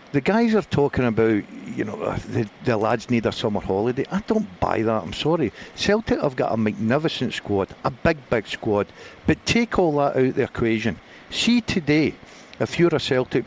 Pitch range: 110-150 Hz